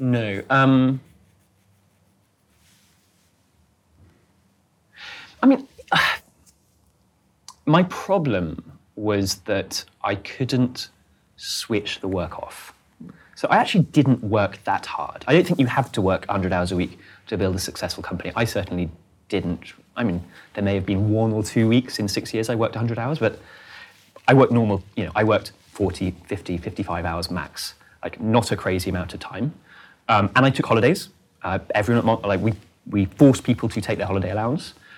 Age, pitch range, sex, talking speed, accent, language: 30-49, 95-120 Hz, male, 165 wpm, British, English